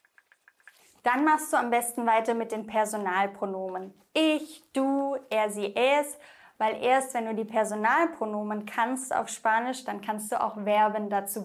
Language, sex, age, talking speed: English, female, 20-39, 150 wpm